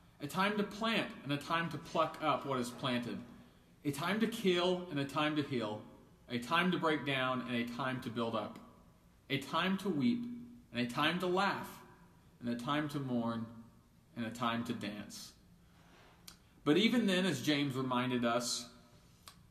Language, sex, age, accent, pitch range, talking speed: English, male, 40-59, American, 130-185 Hz, 180 wpm